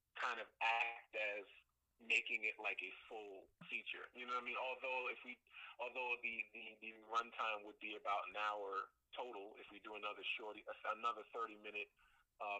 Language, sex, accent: English, male, American